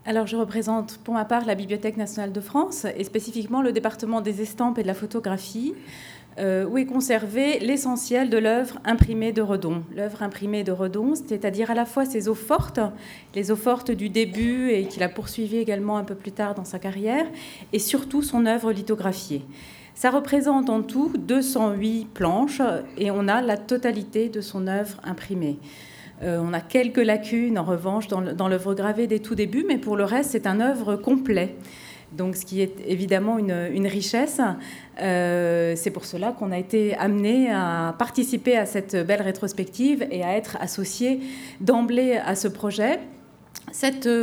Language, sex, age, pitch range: French, female, 30-49, 200-245 Hz